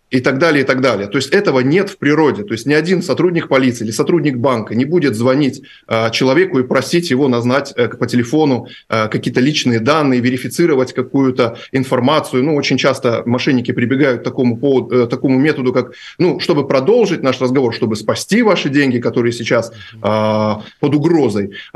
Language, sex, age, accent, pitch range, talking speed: Russian, male, 20-39, native, 120-145 Hz, 180 wpm